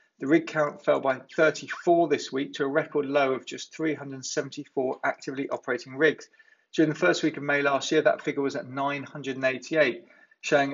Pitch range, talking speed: 130-160 Hz, 180 wpm